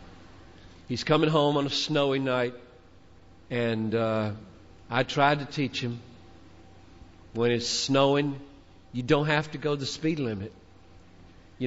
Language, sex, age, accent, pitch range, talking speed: English, male, 50-69, American, 95-140 Hz, 135 wpm